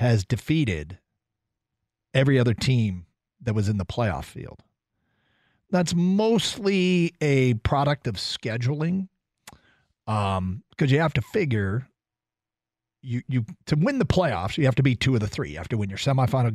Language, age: English, 40-59